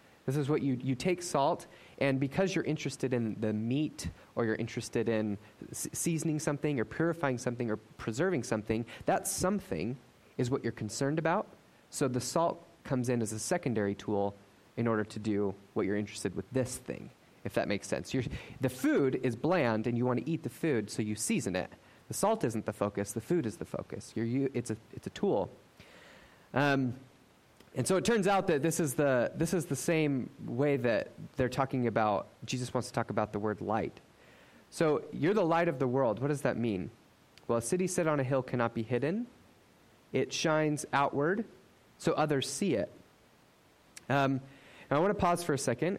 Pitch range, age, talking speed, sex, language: 110-150 Hz, 30-49, 200 wpm, male, English